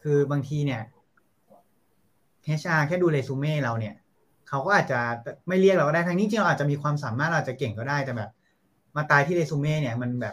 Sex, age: male, 20-39